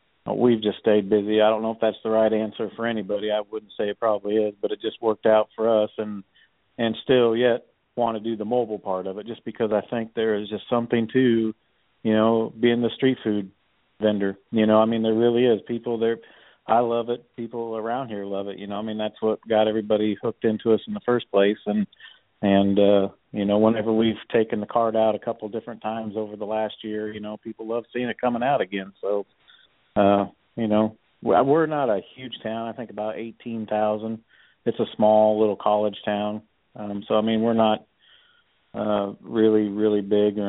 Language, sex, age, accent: English, male, 50-69, American